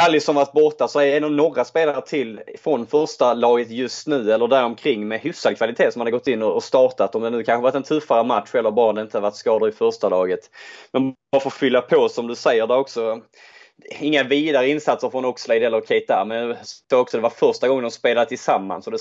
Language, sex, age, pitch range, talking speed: Swedish, male, 20-39, 115-165 Hz, 225 wpm